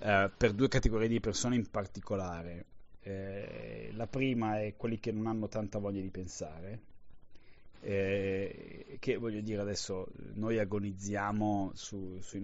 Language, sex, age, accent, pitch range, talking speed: Italian, male, 30-49, native, 95-110 Hz, 130 wpm